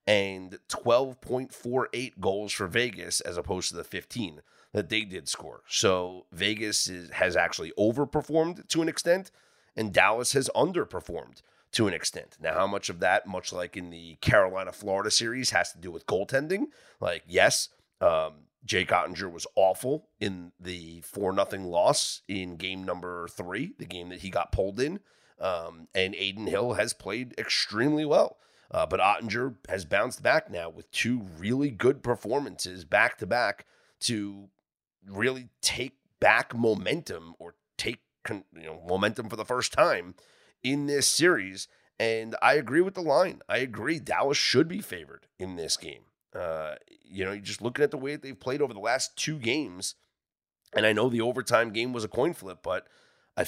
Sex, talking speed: male, 165 wpm